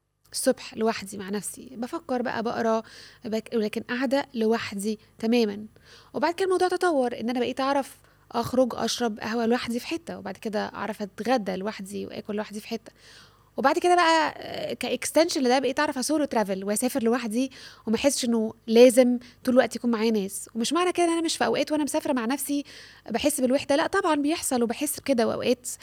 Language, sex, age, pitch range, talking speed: Arabic, female, 20-39, 220-275 Hz, 170 wpm